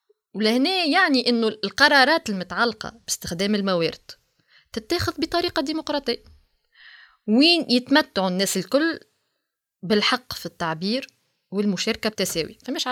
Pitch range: 185-260 Hz